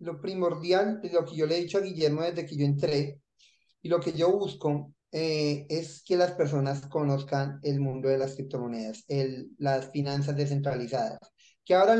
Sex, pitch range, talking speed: male, 140-170 Hz, 180 wpm